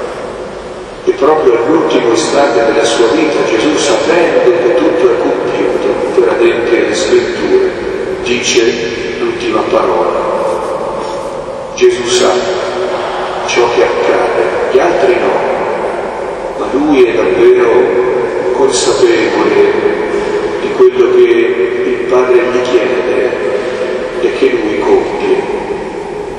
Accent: native